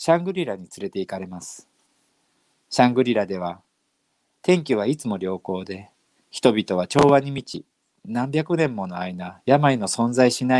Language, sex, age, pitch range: Japanese, male, 40-59, 100-145 Hz